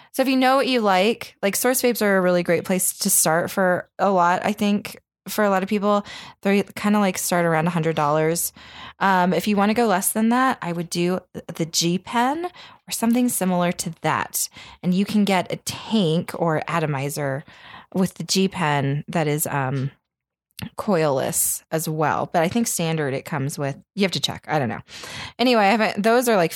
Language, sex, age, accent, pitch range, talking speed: English, female, 20-39, American, 160-215 Hz, 205 wpm